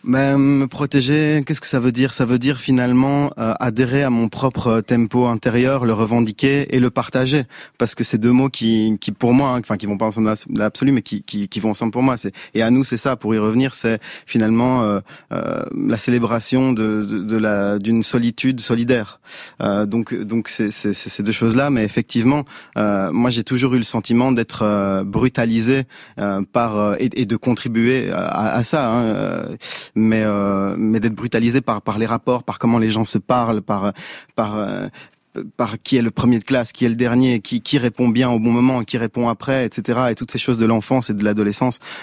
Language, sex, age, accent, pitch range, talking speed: French, male, 30-49, French, 110-130 Hz, 220 wpm